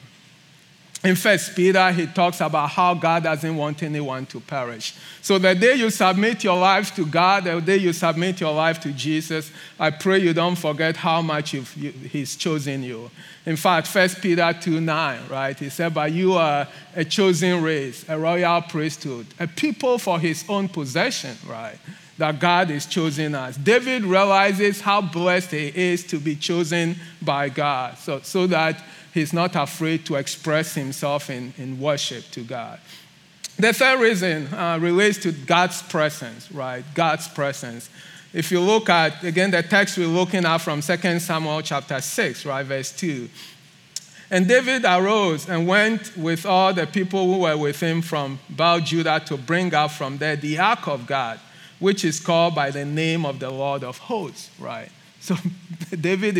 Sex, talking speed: male, 175 wpm